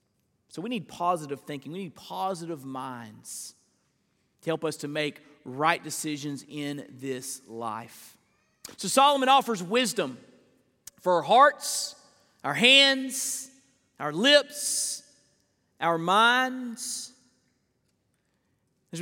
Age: 40-59